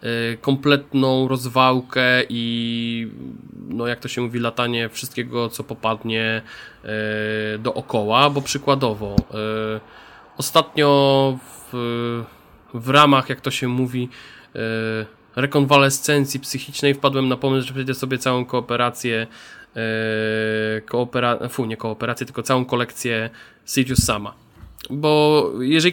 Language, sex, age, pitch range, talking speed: Polish, male, 20-39, 120-140 Hz, 100 wpm